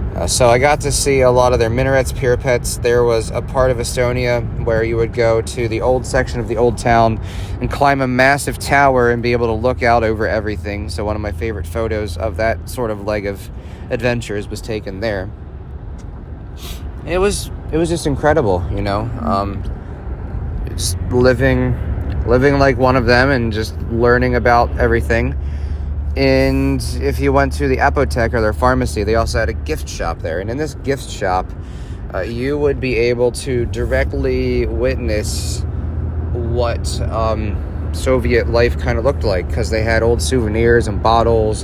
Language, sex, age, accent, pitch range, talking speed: English, male, 30-49, American, 90-120 Hz, 180 wpm